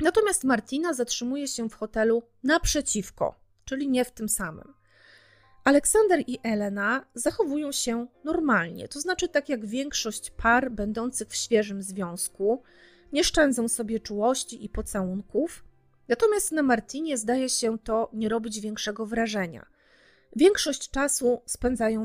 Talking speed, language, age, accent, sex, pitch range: 130 wpm, Polish, 30-49, native, female, 215-270 Hz